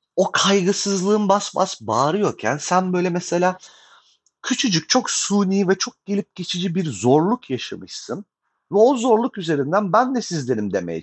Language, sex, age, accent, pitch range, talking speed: Turkish, male, 40-59, native, 140-210 Hz, 140 wpm